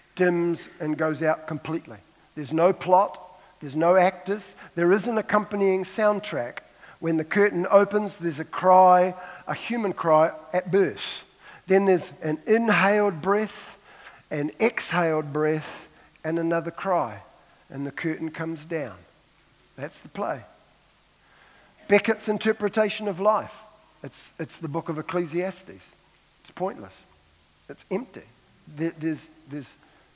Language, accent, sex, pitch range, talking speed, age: English, Australian, male, 155-195 Hz, 125 wpm, 50-69